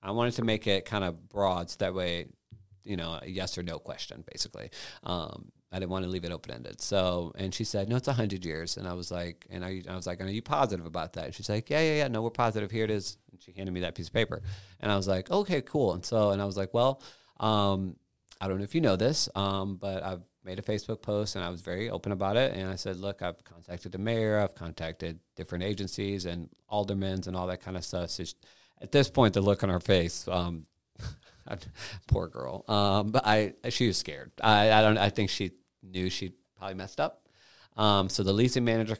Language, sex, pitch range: English, male, 90-110 Hz